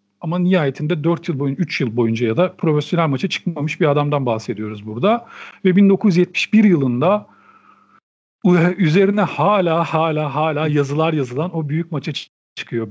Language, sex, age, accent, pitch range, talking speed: Turkish, male, 40-59, native, 150-205 Hz, 140 wpm